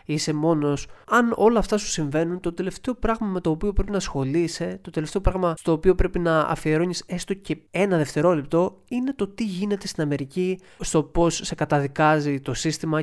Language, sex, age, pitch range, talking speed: Greek, male, 20-39, 145-180 Hz, 185 wpm